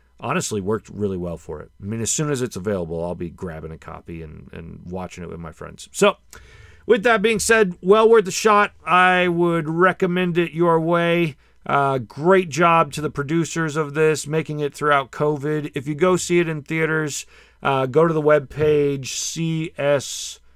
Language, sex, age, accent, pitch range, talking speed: English, male, 40-59, American, 100-155 Hz, 190 wpm